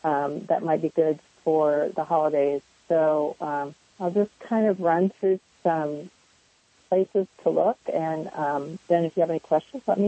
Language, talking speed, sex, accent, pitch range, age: English, 180 wpm, female, American, 155-190 Hz, 40-59